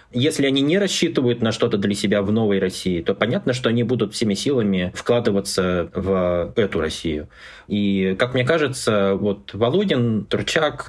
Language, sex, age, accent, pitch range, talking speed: Russian, male, 20-39, native, 95-125 Hz, 160 wpm